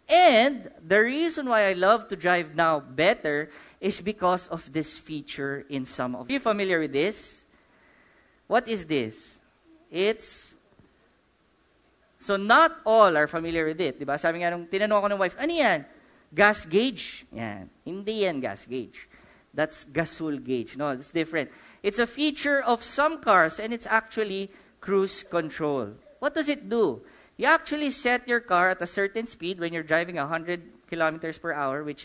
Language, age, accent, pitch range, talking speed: English, 50-69, Filipino, 155-235 Hz, 165 wpm